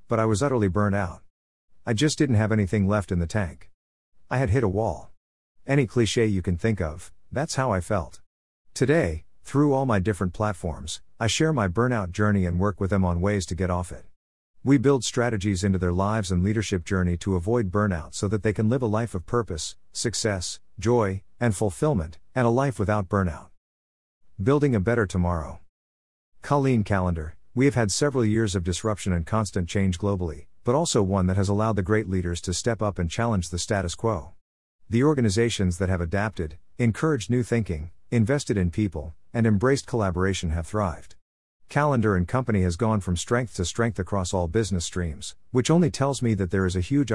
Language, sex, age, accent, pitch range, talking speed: English, male, 50-69, American, 90-115 Hz, 195 wpm